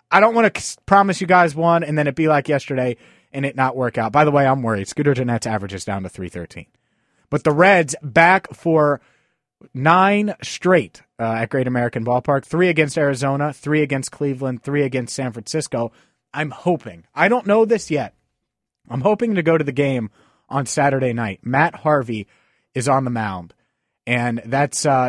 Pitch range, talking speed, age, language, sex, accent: 120-160 Hz, 190 wpm, 30-49, English, male, American